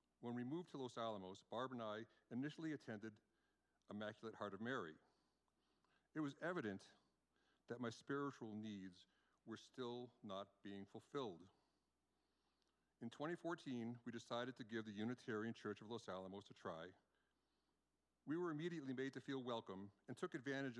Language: English